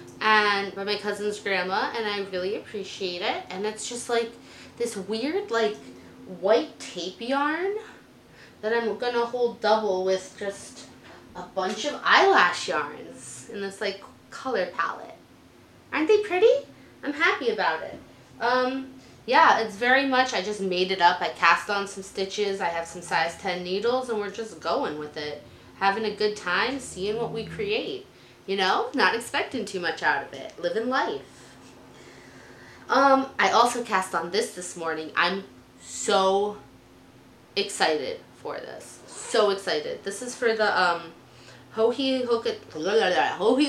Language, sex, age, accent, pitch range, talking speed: English, female, 20-39, American, 190-250 Hz, 150 wpm